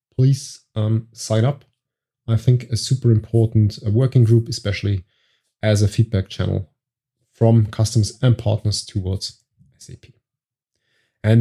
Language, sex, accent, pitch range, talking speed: English, male, German, 110-135 Hz, 120 wpm